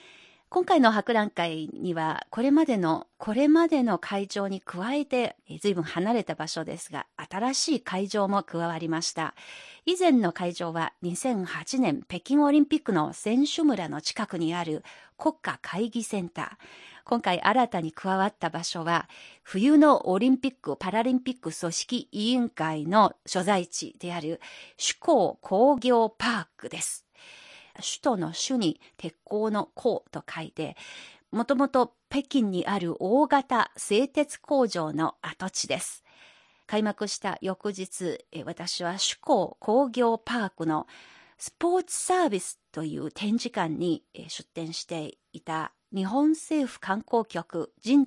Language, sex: Japanese, female